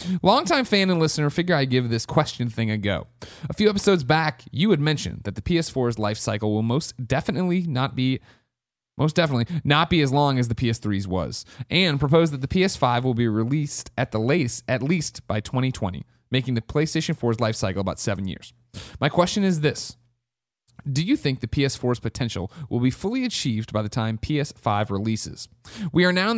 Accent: American